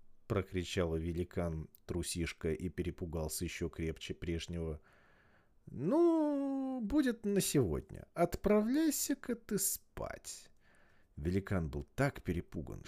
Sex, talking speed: male, 90 wpm